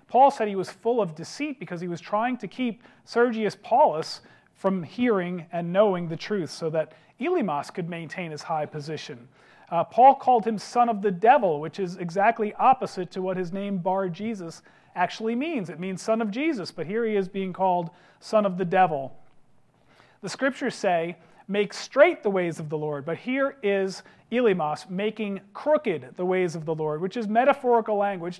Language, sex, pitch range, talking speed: English, male, 165-215 Hz, 190 wpm